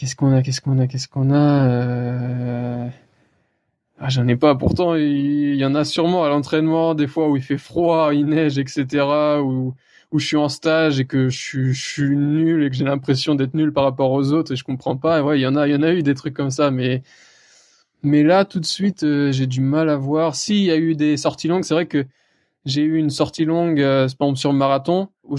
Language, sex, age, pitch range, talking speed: French, male, 20-39, 135-160 Hz, 250 wpm